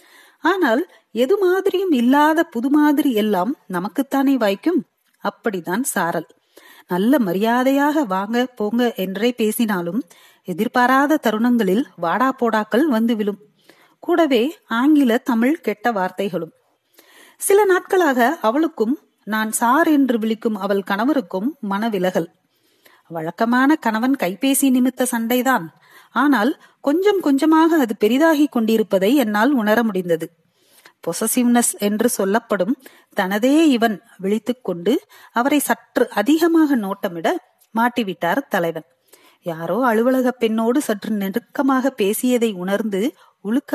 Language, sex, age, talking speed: Tamil, female, 40-59, 90 wpm